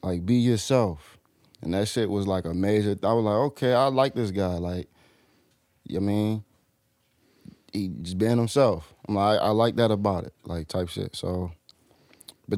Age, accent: 20-39, American